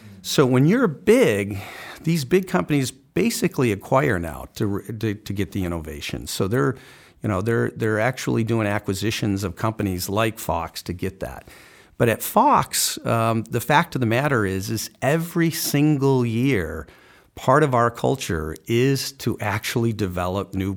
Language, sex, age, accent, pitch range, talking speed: English, male, 50-69, American, 100-130 Hz, 160 wpm